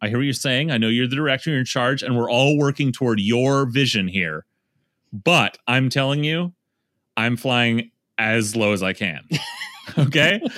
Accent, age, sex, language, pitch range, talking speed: American, 30-49, male, English, 120-160 Hz, 185 wpm